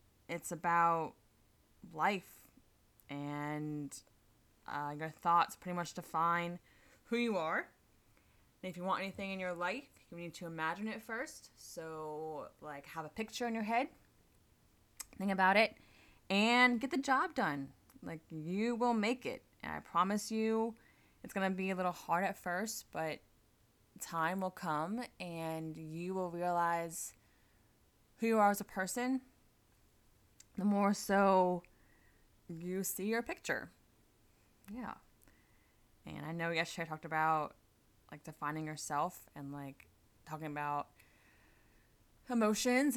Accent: American